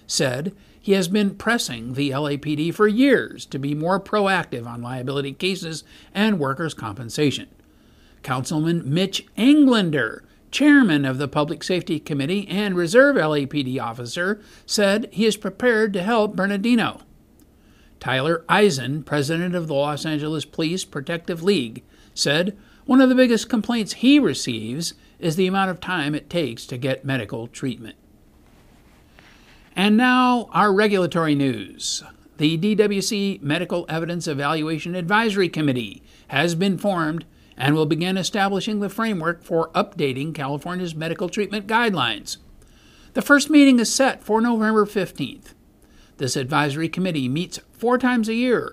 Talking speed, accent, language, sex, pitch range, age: 135 wpm, American, English, male, 150-210 Hz, 50-69